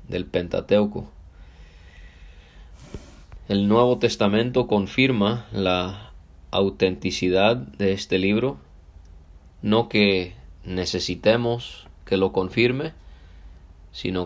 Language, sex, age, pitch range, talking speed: Spanish, male, 20-39, 85-100 Hz, 75 wpm